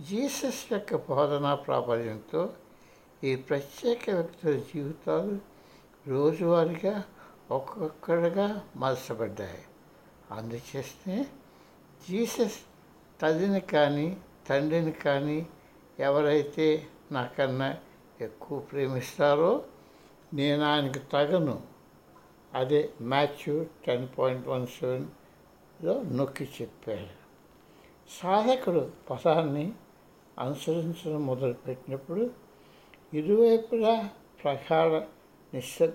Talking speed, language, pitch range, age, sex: 65 wpm, Telugu, 140-180 Hz, 60-79, male